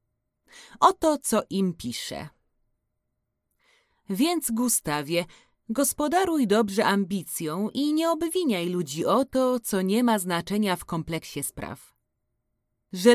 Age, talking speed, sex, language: 30-49, 105 wpm, female, Polish